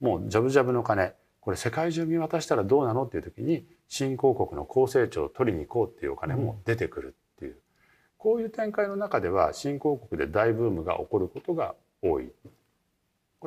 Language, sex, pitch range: Japanese, male, 110-170 Hz